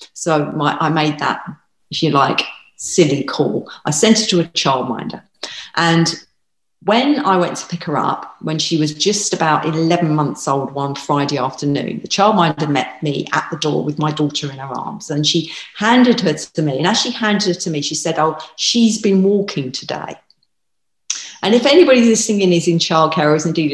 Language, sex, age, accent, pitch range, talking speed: English, female, 40-59, British, 150-195 Hz, 195 wpm